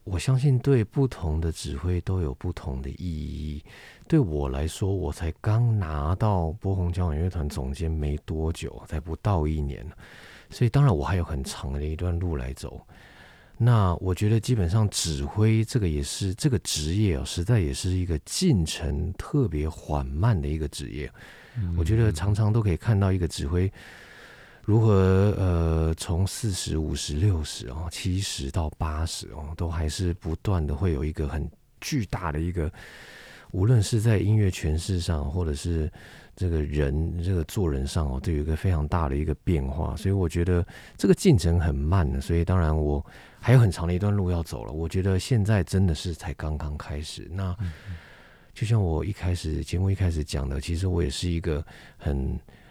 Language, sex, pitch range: Chinese, male, 75-95 Hz